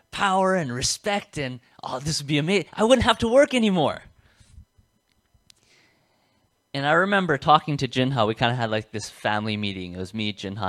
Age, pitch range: 30-49, 95-145 Hz